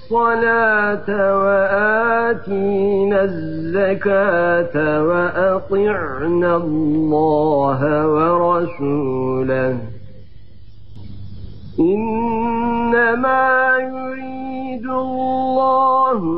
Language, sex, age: Turkish, male, 50-69